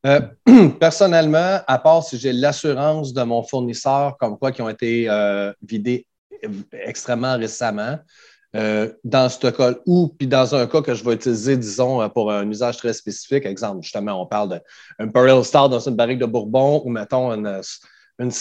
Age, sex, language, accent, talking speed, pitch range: 30-49, male, French, Canadian, 175 wpm, 120-150 Hz